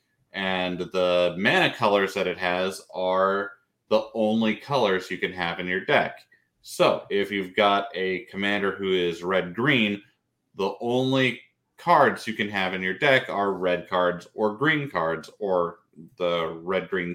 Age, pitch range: 30-49, 90-110 Hz